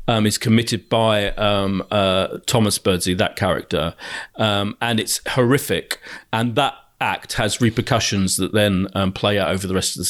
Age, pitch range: 40-59, 105-125 Hz